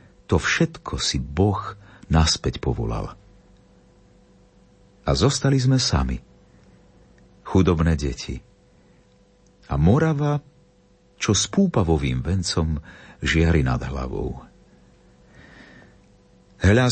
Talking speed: 80 wpm